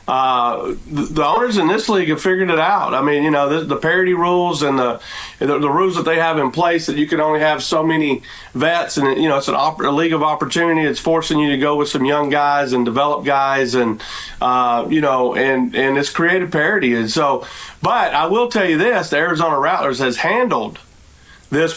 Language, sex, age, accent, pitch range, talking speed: English, male, 40-59, American, 130-155 Hz, 225 wpm